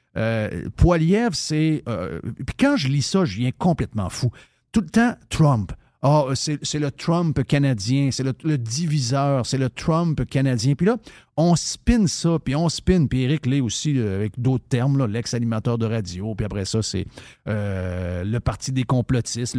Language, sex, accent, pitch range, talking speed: French, male, Canadian, 110-145 Hz, 185 wpm